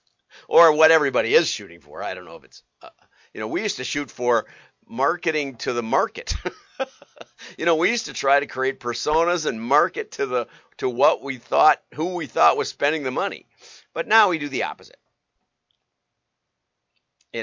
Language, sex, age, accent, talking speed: English, male, 50-69, American, 185 wpm